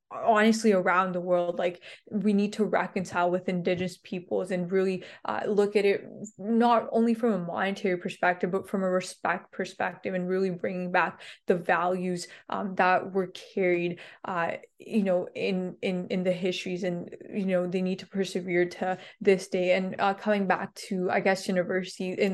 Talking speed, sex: 175 wpm, female